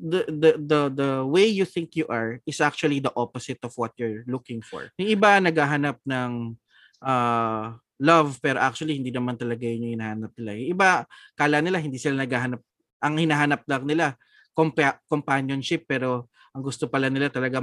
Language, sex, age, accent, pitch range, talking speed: Filipino, male, 20-39, native, 120-155 Hz, 175 wpm